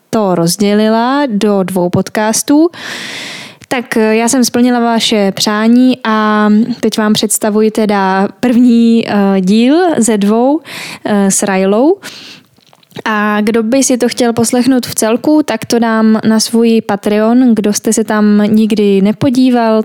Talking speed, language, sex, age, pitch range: 130 wpm, Czech, female, 10-29, 205-245 Hz